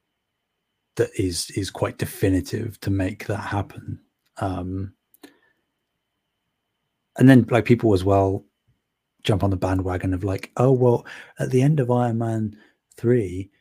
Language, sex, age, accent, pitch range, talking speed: English, male, 20-39, British, 95-115 Hz, 135 wpm